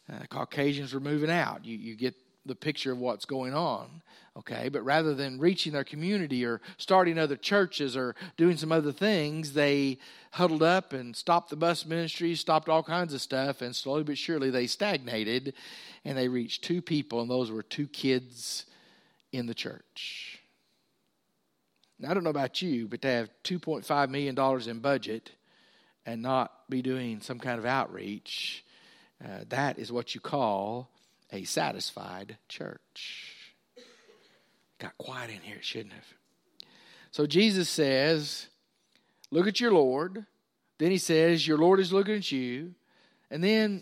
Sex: male